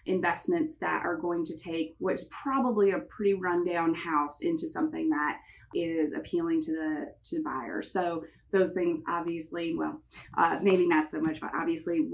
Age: 30-49